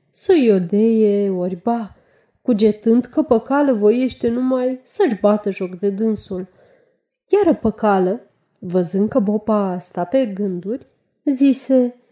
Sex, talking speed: female, 115 wpm